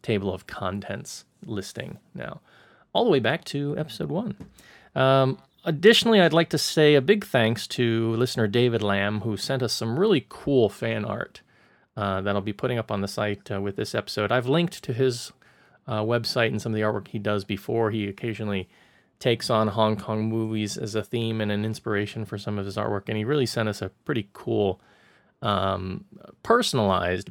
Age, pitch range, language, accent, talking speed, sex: 30-49, 105-135 Hz, English, American, 195 wpm, male